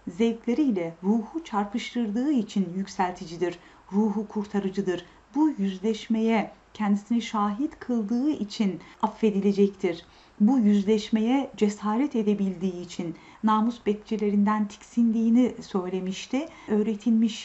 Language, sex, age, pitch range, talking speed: Turkish, female, 40-59, 200-240 Hz, 85 wpm